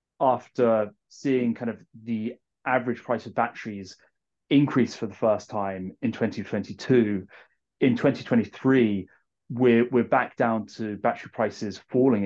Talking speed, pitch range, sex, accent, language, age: 125 wpm, 105-120 Hz, male, British, English, 30-49